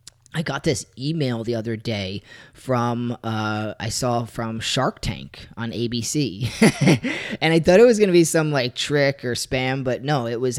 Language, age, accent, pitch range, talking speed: English, 20-39, American, 115-145 Hz, 185 wpm